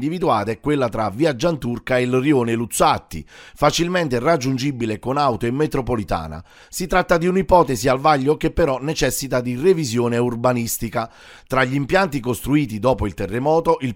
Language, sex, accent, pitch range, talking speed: Italian, male, native, 120-160 Hz, 155 wpm